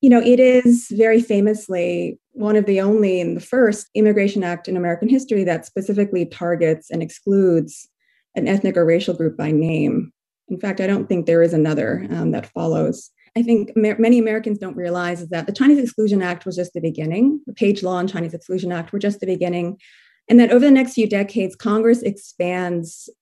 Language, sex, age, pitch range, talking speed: English, female, 30-49, 175-225 Hz, 200 wpm